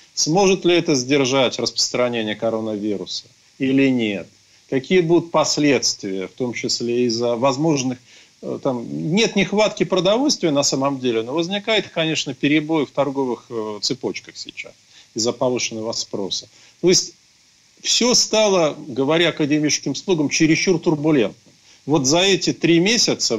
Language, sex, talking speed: Ukrainian, male, 120 wpm